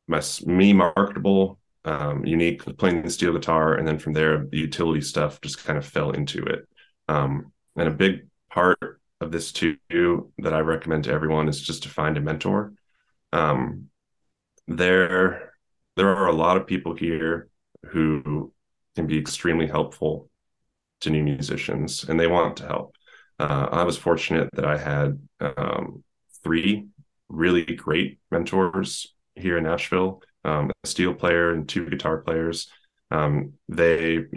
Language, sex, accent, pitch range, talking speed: English, male, American, 75-90 Hz, 155 wpm